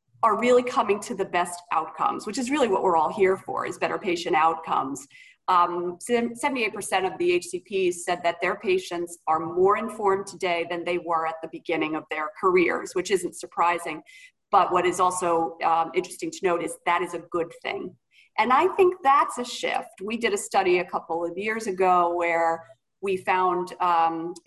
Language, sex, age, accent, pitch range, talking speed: English, female, 40-59, American, 170-210 Hz, 190 wpm